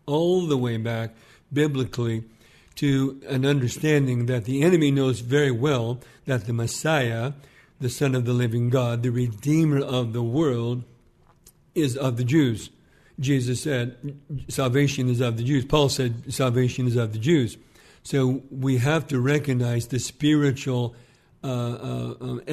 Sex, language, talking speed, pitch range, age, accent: male, English, 145 wpm, 120-135 Hz, 50-69, American